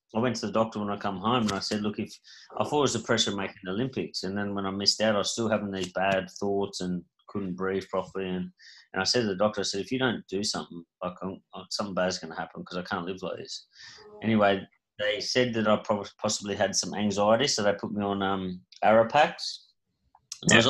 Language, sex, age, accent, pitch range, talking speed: English, male, 30-49, Australian, 95-110 Hz, 260 wpm